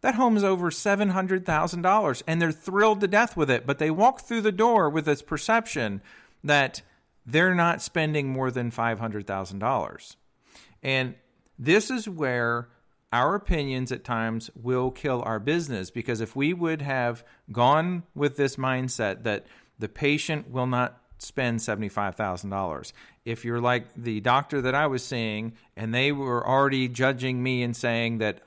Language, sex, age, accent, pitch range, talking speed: English, male, 50-69, American, 115-155 Hz, 155 wpm